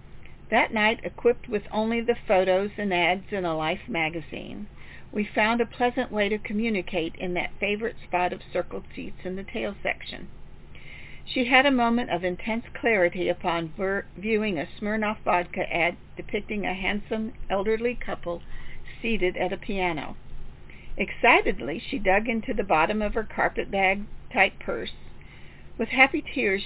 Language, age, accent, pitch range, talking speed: English, 60-79, American, 180-225 Hz, 150 wpm